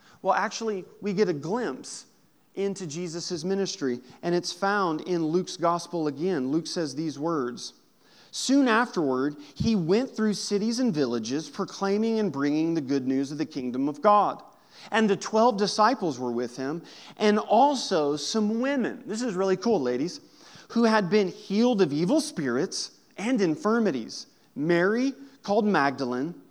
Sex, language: male, English